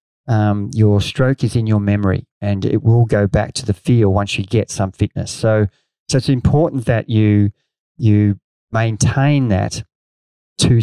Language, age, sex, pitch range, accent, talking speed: English, 40-59, male, 105-135 Hz, Australian, 165 wpm